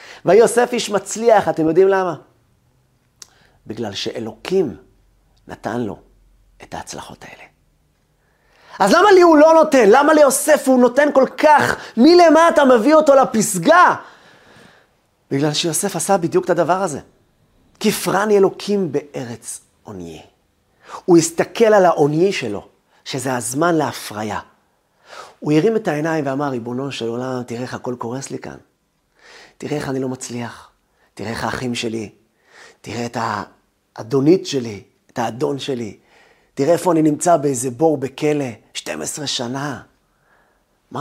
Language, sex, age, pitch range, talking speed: Hebrew, male, 40-59, 125-195 Hz, 125 wpm